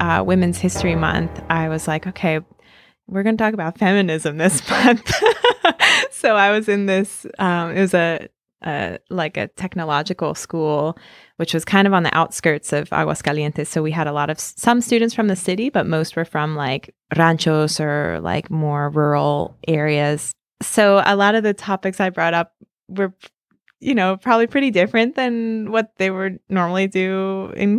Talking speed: 180 wpm